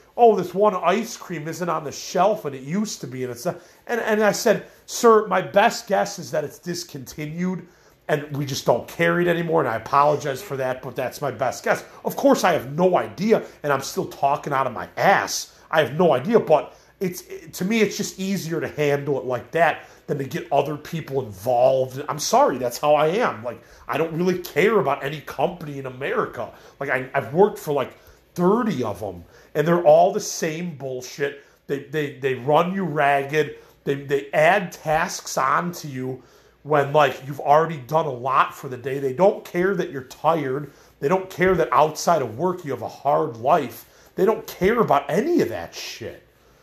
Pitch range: 140-185 Hz